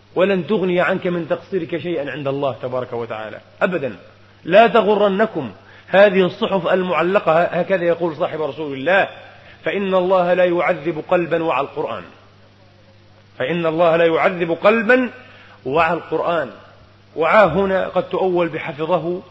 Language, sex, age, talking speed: Arabic, male, 40-59, 120 wpm